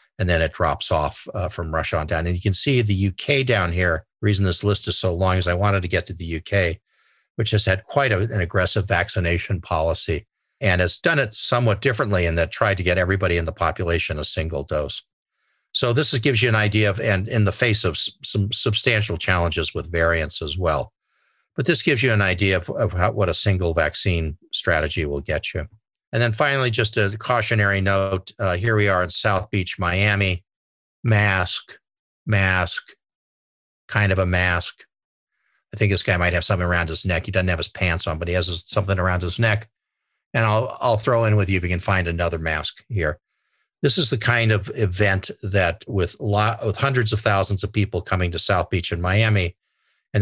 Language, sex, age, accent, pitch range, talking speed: English, male, 50-69, American, 90-105 Hz, 205 wpm